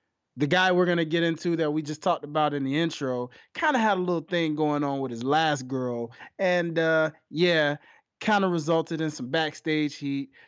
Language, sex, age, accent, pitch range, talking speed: English, male, 20-39, American, 150-195 Hz, 210 wpm